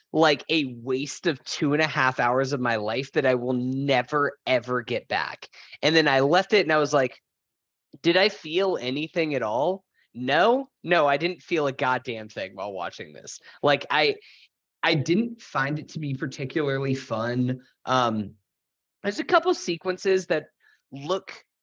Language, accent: English, American